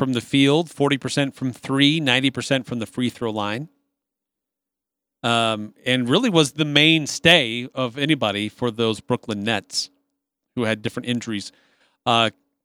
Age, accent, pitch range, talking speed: 40-59, American, 125-170 Hz, 140 wpm